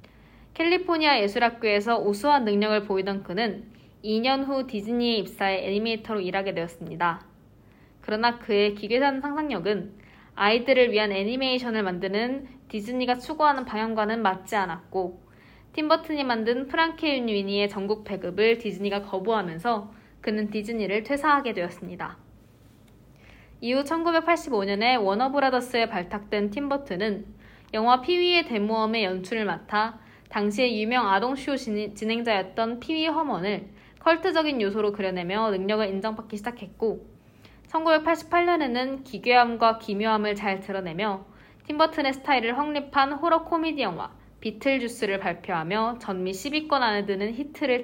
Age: 20-39